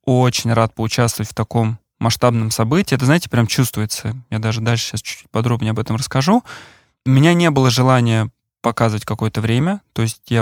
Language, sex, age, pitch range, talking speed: Russian, male, 20-39, 115-130 Hz, 180 wpm